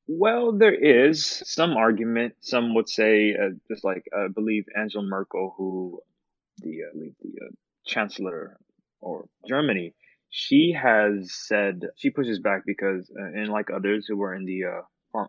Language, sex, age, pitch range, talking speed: English, male, 20-39, 100-115 Hz, 160 wpm